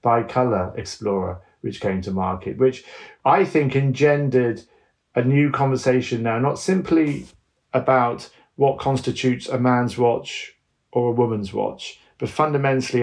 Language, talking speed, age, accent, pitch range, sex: English, 135 wpm, 40-59, British, 115-135 Hz, male